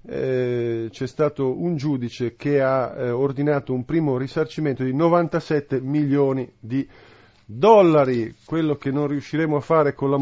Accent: native